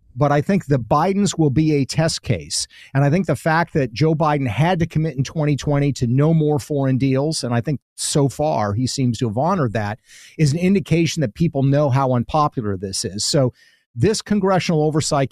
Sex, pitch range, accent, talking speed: male, 125-160 Hz, American, 210 wpm